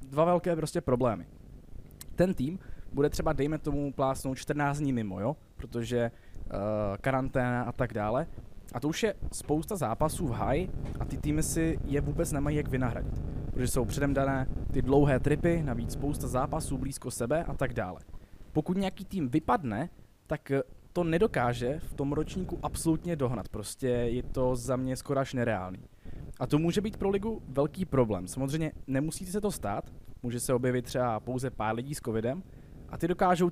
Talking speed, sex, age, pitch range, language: 175 wpm, male, 20-39, 125-155 Hz, Czech